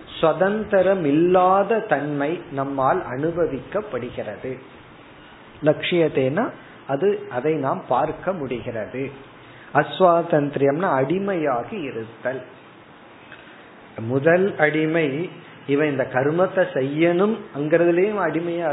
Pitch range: 140-190 Hz